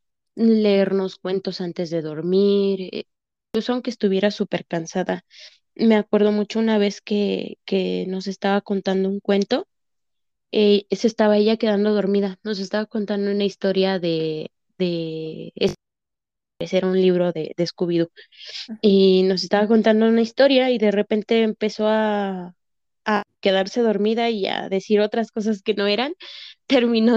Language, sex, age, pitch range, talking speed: Spanish, female, 20-39, 185-215 Hz, 140 wpm